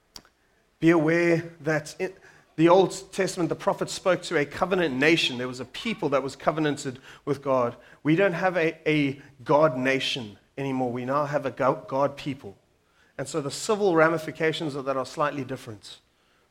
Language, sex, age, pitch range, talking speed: English, male, 40-59, 135-170 Hz, 170 wpm